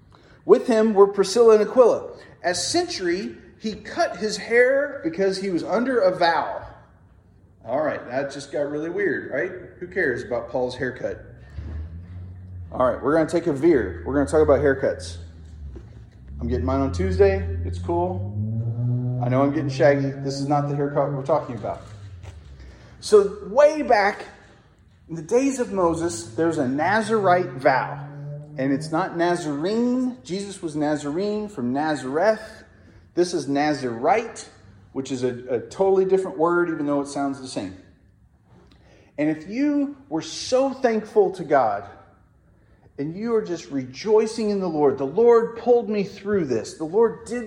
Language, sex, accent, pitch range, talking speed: English, male, American, 125-210 Hz, 160 wpm